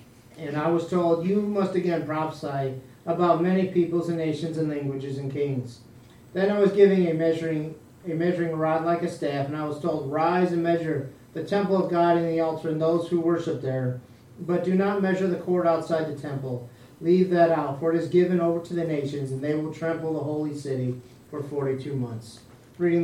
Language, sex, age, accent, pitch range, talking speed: English, male, 40-59, American, 140-175 Hz, 205 wpm